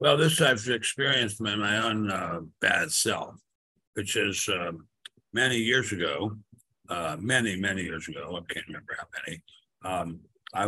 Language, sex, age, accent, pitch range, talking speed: English, male, 60-79, American, 95-120 Hz, 165 wpm